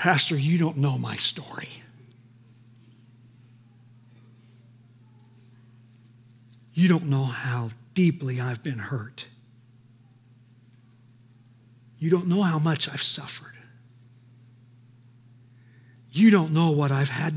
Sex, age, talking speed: male, 60-79, 95 wpm